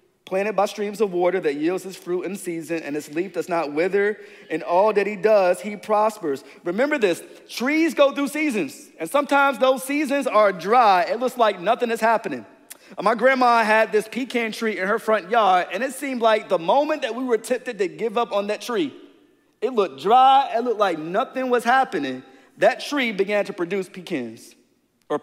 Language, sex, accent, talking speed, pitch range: English, male, American, 200 wpm, 210-290 Hz